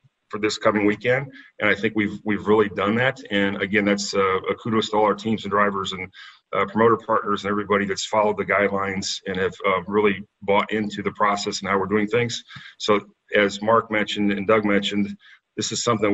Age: 40-59